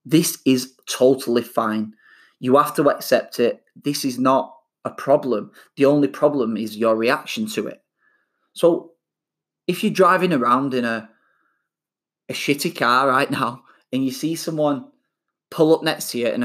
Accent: British